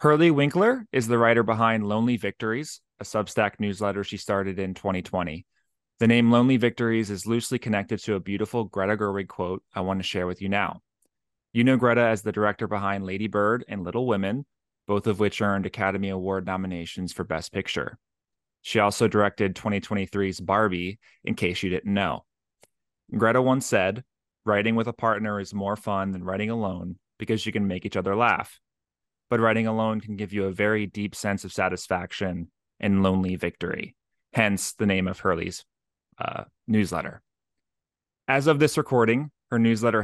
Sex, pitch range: male, 95-115 Hz